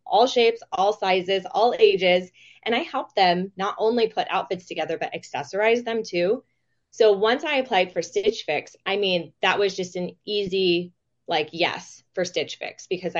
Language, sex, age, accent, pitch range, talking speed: English, female, 20-39, American, 165-210 Hz, 175 wpm